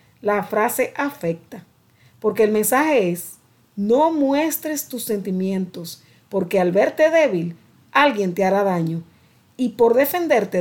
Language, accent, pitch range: Spanish, American, 160-255 Hz